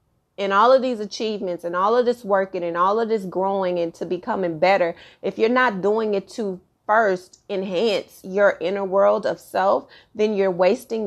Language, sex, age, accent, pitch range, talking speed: English, female, 30-49, American, 175-215 Hz, 190 wpm